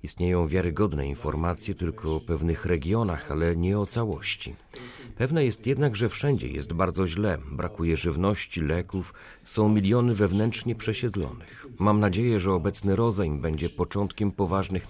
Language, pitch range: Polish, 90-120 Hz